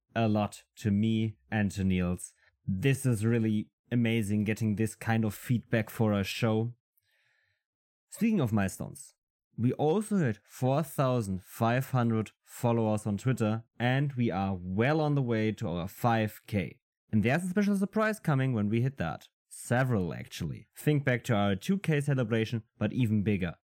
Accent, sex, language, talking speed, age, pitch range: German, male, English, 150 wpm, 20-39, 105-130 Hz